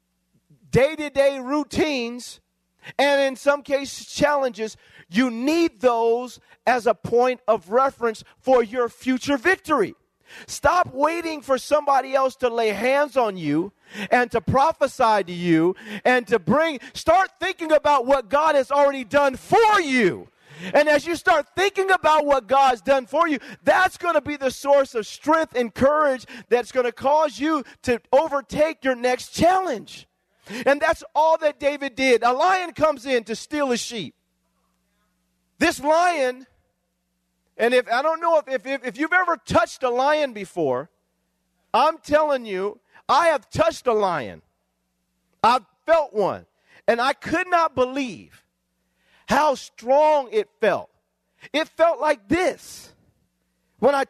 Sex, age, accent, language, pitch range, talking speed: male, 40-59, American, English, 220-300 Hz, 150 wpm